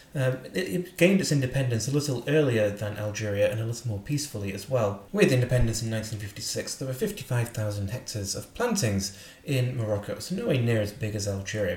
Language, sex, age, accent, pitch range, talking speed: English, male, 30-49, British, 105-130 Hz, 190 wpm